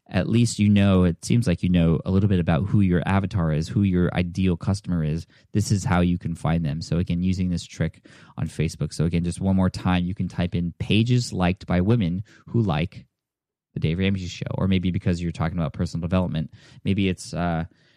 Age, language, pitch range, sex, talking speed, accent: 20-39, English, 90-105 Hz, male, 225 wpm, American